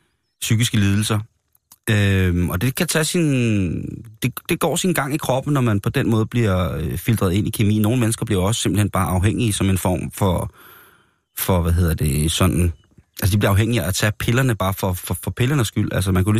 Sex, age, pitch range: male, 30-49, 95-115 Hz